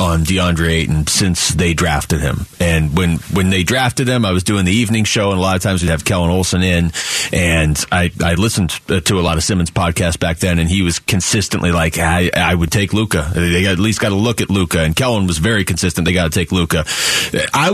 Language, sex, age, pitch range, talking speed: English, male, 30-49, 90-130 Hz, 235 wpm